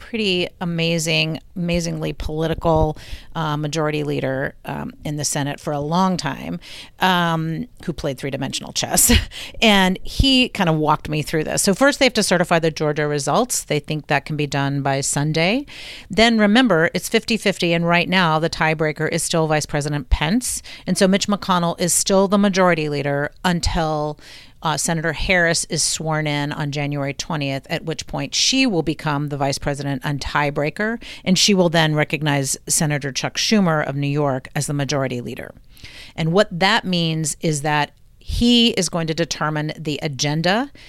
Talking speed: 170 wpm